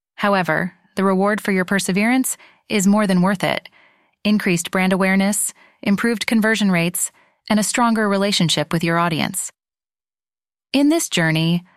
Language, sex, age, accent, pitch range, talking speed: English, female, 30-49, American, 180-230 Hz, 140 wpm